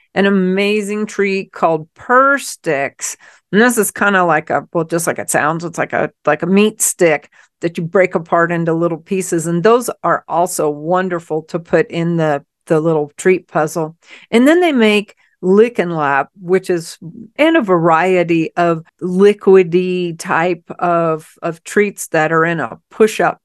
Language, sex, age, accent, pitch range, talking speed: English, female, 50-69, American, 160-205 Hz, 170 wpm